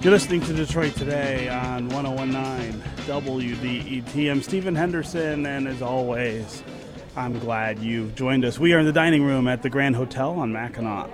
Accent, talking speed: American, 160 wpm